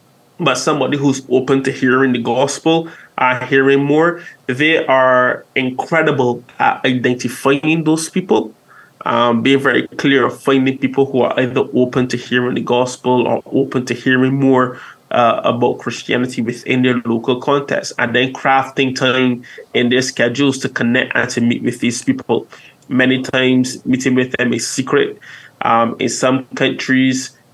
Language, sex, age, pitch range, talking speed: English, male, 20-39, 120-135 Hz, 155 wpm